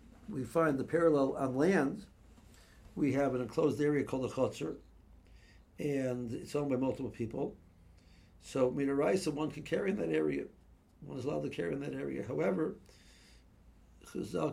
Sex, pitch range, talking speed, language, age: male, 105-145 Hz, 155 wpm, English, 60-79